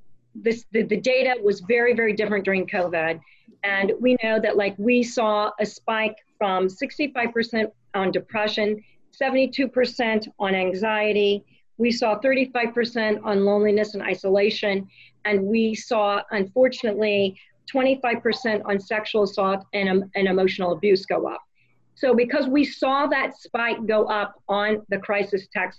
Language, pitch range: English, 200-235 Hz